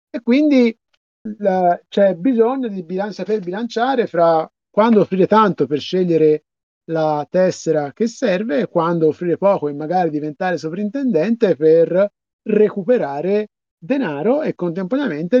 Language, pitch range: Italian, 165-235 Hz